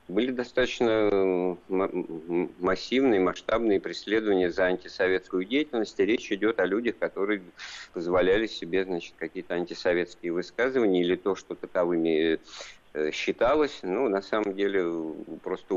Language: Russian